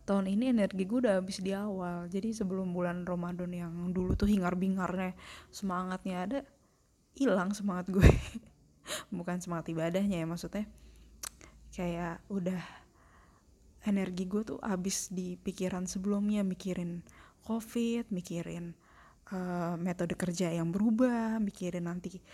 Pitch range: 170-200 Hz